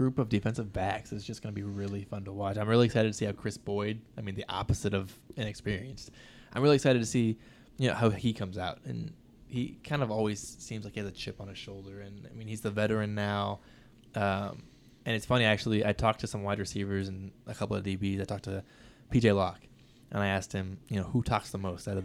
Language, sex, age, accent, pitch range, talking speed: English, male, 20-39, American, 100-125 Hz, 245 wpm